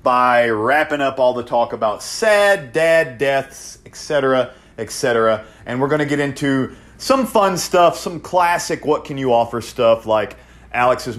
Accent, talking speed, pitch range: American, 145 wpm, 120-165 Hz